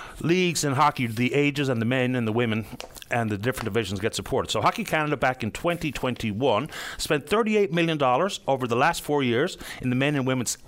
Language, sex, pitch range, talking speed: English, male, 120-170 Hz, 200 wpm